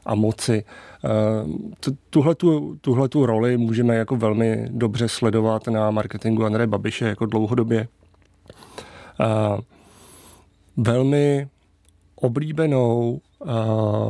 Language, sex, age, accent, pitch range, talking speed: Czech, male, 40-59, native, 110-130 Hz, 95 wpm